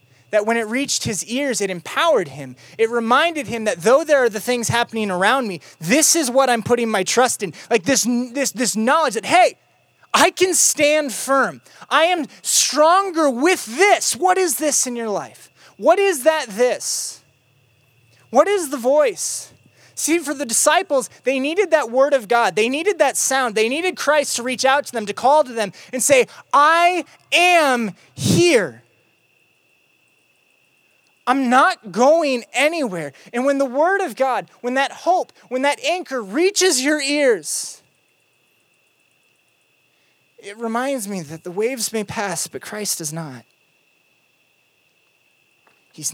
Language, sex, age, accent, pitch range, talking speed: English, male, 20-39, American, 200-295 Hz, 160 wpm